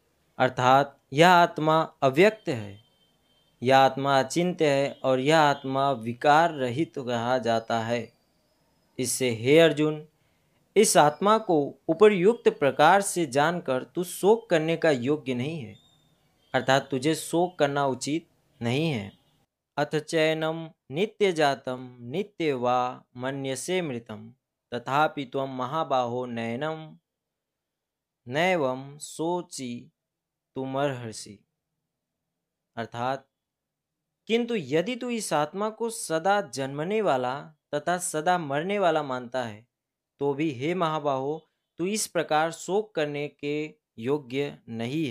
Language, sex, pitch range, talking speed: Hindi, male, 130-165 Hz, 115 wpm